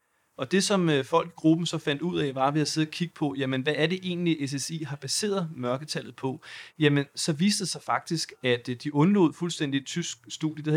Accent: native